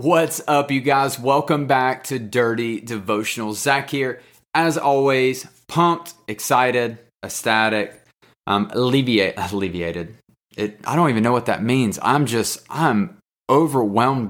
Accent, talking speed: American, 130 wpm